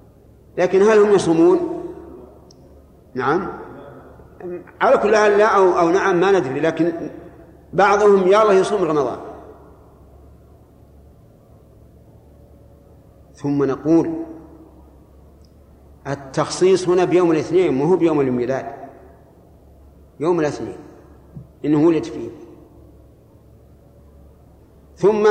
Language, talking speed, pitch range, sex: Arabic, 85 wpm, 150-195 Hz, male